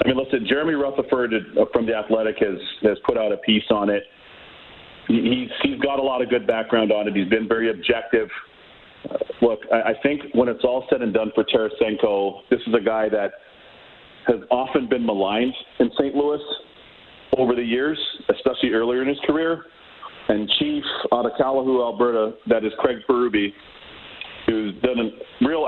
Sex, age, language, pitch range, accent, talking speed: male, 40-59, English, 110-135 Hz, American, 175 wpm